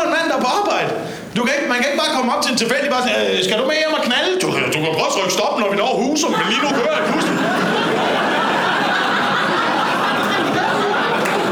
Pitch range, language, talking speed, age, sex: 220-310 Hz, Danish, 225 wpm, 30-49, male